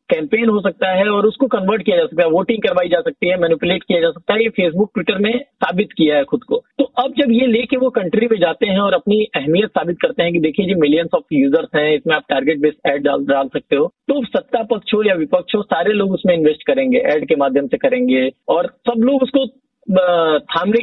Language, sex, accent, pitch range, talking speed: Hindi, male, native, 175-255 Hz, 235 wpm